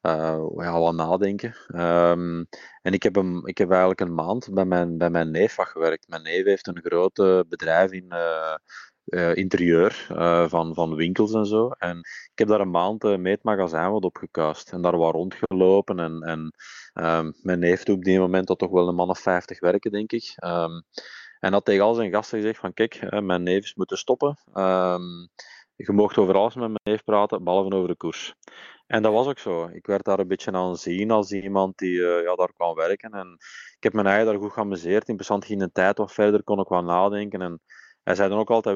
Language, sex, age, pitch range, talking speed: Dutch, male, 20-39, 90-105 Hz, 220 wpm